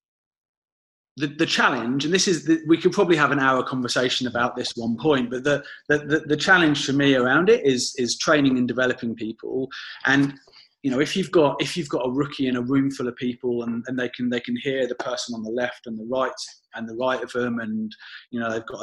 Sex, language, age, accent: male, English, 30-49, British